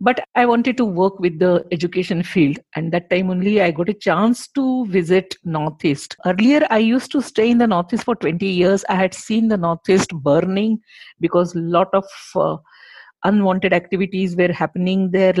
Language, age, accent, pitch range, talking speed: English, 50-69, Indian, 170-230 Hz, 185 wpm